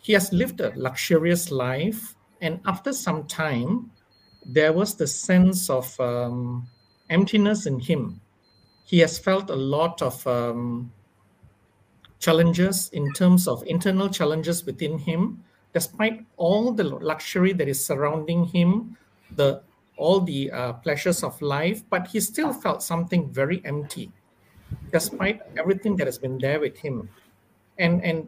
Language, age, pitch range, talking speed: English, 50-69, 140-195 Hz, 140 wpm